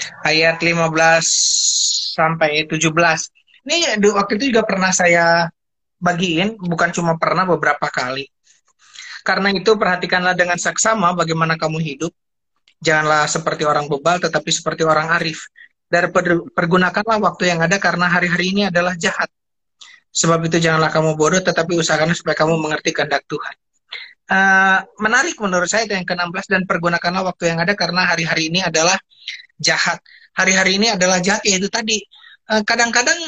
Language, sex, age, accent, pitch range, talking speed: Indonesian, male, 30-49, native, 170-220 Hz, 135 wpm